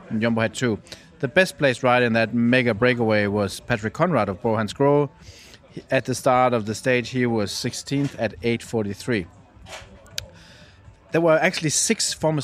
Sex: male